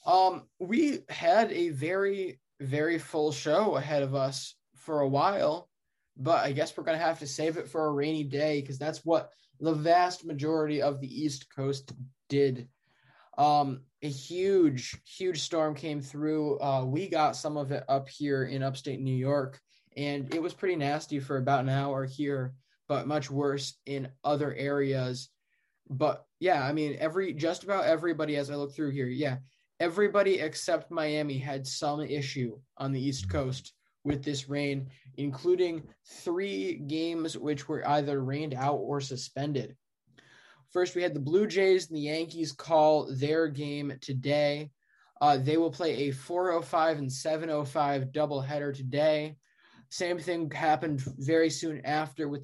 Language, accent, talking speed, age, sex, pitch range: English, American, 160 wpm, 20-39, male, 135-160 Hz